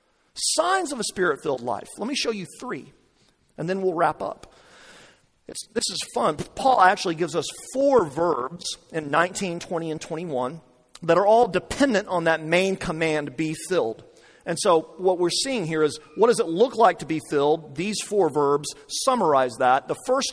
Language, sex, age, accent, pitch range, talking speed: English, male, 40-59, American, 160-235 Hz, 180 wpm